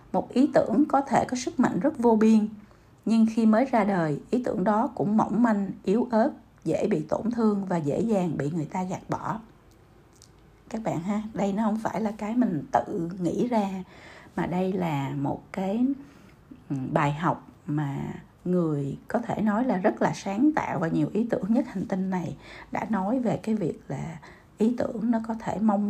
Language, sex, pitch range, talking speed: Vietnamese, female, 175-230 Hz, 200 wpm